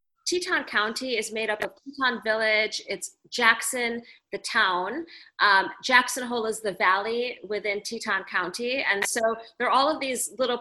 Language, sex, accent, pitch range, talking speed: English, female, American, 210-250 Hz, 165 wpm